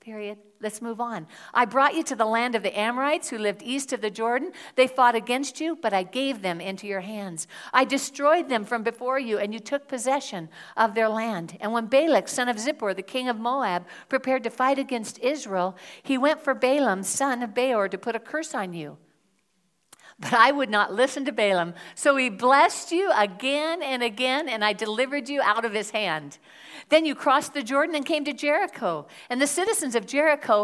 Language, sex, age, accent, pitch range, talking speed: English, female, 60-79, American, 210-275 Hz, 210 wpm